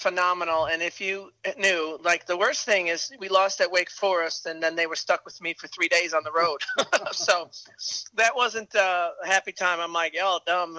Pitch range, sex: 155-190 Hz, male